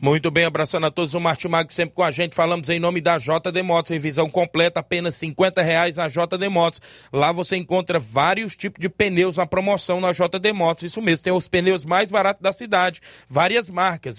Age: 20-39